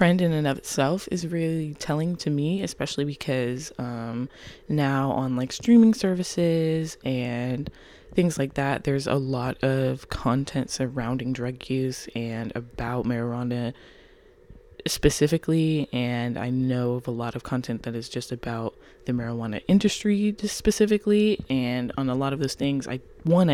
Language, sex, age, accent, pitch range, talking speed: English, female, 20-39, American, 125-155 Hz, 150 wpm